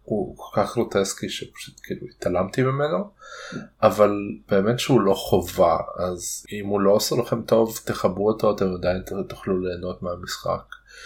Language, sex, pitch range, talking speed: Hebrew, male, 90-110 Hz, 145 wpm